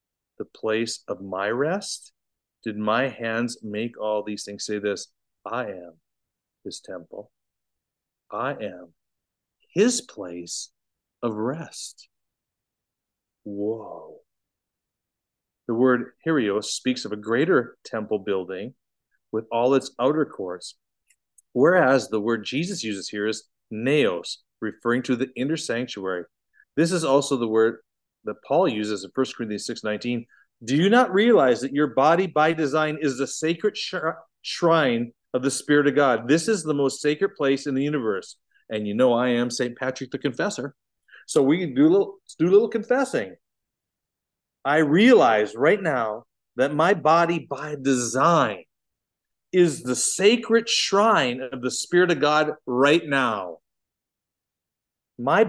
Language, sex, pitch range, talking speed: English, male, 110-160 Hz, 140 wpm